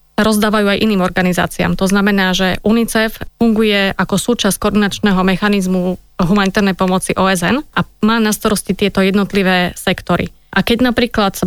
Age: 20-39